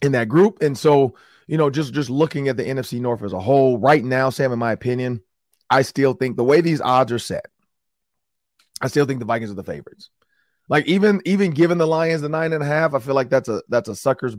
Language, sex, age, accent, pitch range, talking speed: English, male, 30-49, American, 115-140 Hz, 245 wpm